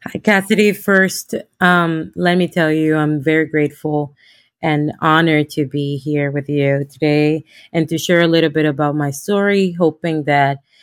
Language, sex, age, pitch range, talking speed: English, female, 20-39, 145-175 Hz, 165 wpm